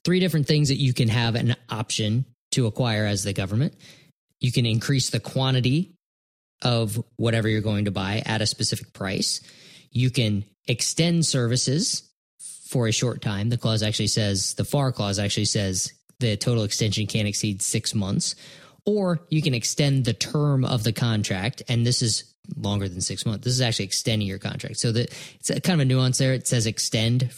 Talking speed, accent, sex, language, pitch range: 190 wpm, American, male, English, 110-135 Hz